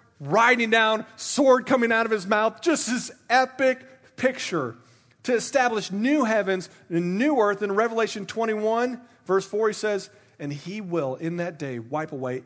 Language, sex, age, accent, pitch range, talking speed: English, male, 40-59, American, 135-220 Hz, 165 wpm